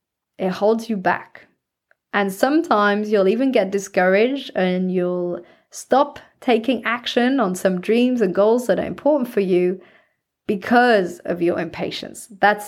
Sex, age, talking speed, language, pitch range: female, 20-39, 140 wpm, English, 185-230 Hz